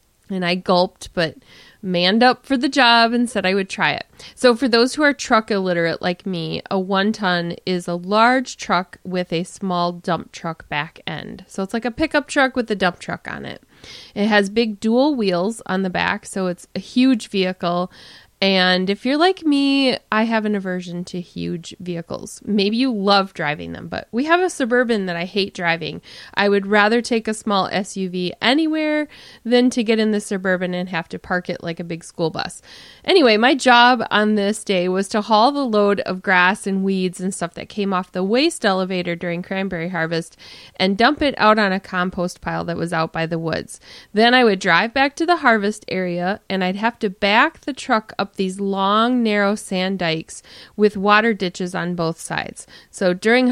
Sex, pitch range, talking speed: female, 180-225 Hz, 205 wpm